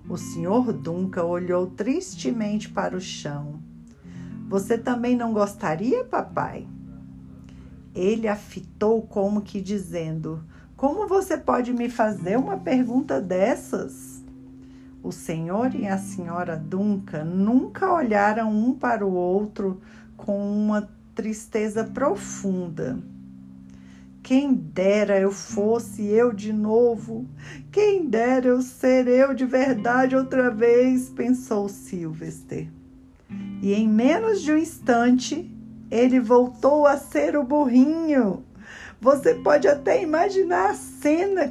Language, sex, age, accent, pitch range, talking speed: Portuguese, female, 50-69, Brazilian, 185-255 Hz, 115 wpm